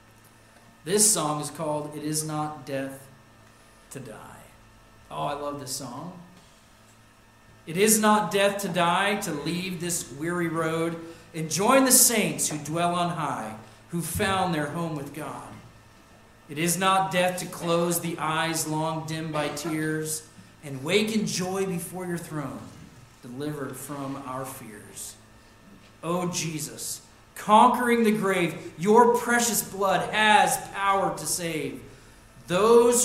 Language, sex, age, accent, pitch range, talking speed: English, male, 40-59, American, 120-175 Hz, 140 wpm